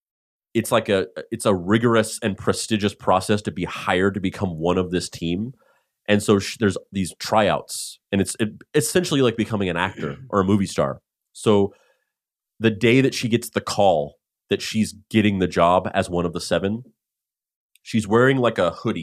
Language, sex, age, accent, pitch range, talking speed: English, male, 30-49, American, 90-115 Hz, 185 wpm